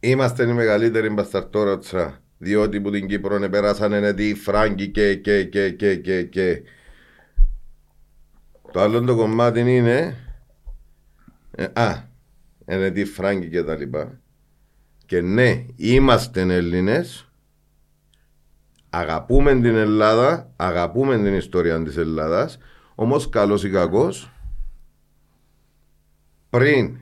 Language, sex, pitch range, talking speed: Greek, male, 80-115 Hz, 100 wpm